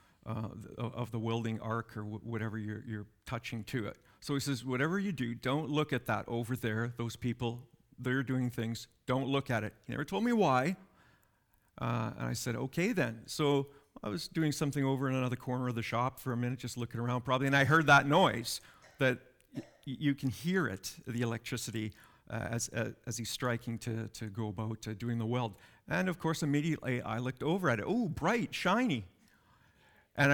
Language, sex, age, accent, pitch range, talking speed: English, male, 50-69, American, 115-145 Hz, 210 wpm